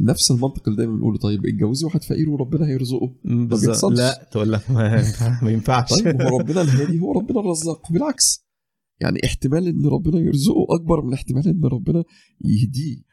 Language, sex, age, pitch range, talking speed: Arabic, male, 40-59, 110-160 Hz, 170 wpm